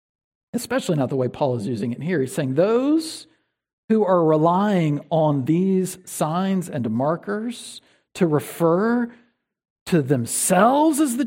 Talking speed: 140 wpm